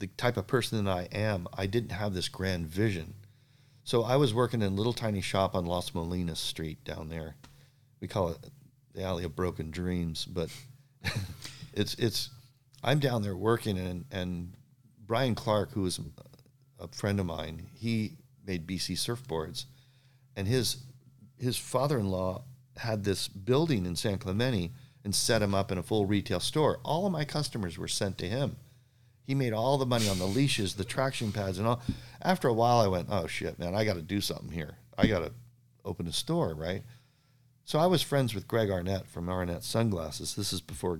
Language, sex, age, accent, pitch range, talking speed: English, male, 50-69, American, 95-125 Hz, 190 wpm